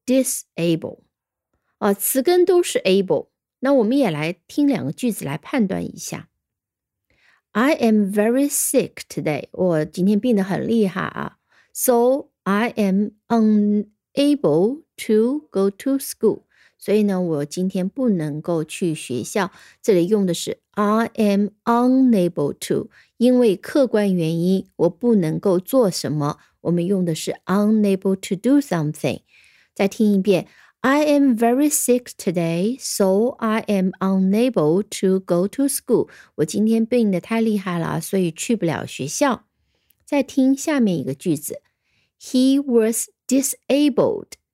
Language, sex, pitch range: Chinese, female, 185-250 Hz